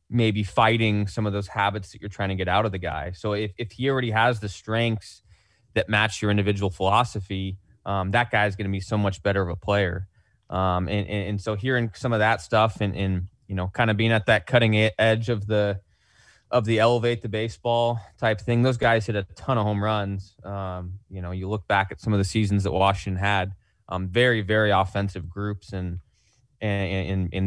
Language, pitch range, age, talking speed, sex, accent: English, 95-110 Hz, 20-39, 225 wpm, male, American